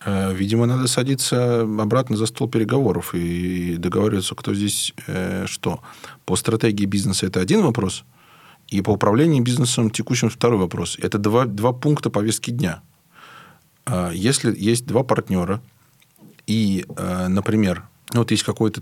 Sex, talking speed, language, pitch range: male, 130 wpm, Russian, 95-115 Hz